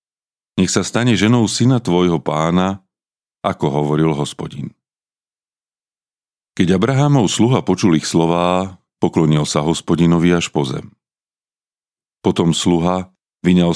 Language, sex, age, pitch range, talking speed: Slovak, male, 40-59, 80-105 Hz, 105 wpm